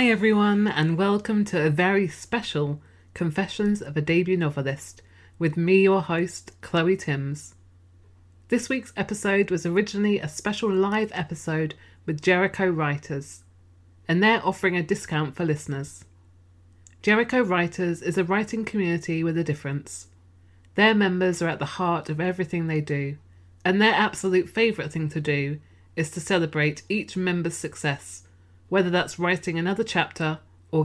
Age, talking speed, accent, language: 30-49, 150 wpm, British, English